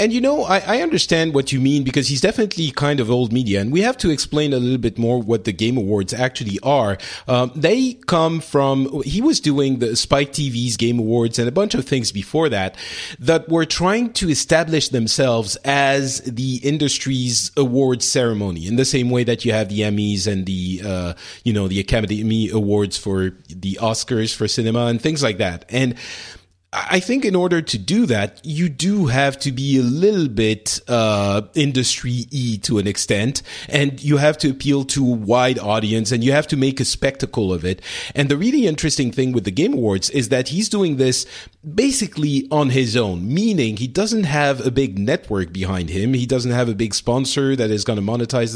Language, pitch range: English, 110-145 Hz